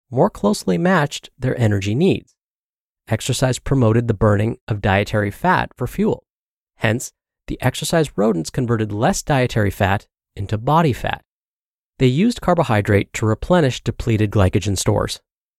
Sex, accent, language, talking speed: male, American, English, 130 wpm